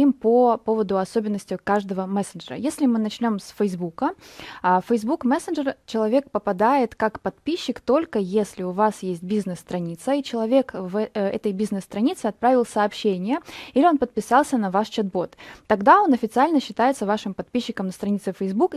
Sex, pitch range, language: female, 200-250 Hz, Russian